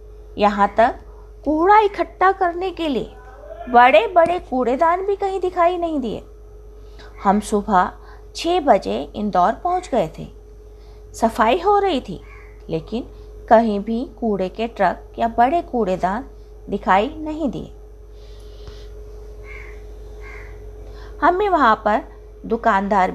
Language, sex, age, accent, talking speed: Hindi, female, 20-39, native, 115 wpm